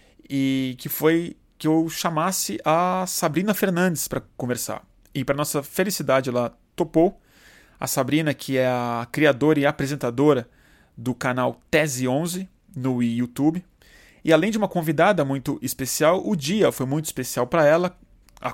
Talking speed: 150 wpm